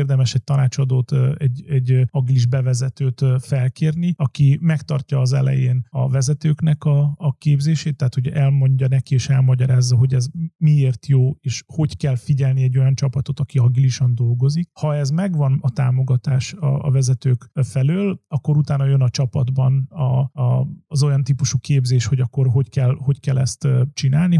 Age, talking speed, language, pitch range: 30-49, 150 wpm, Hungarian, 130-150 Hz